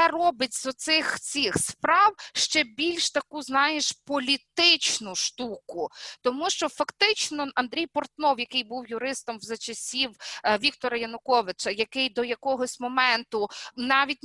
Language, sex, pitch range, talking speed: Ukrainian, female, 235-295 Hz, 120 wpm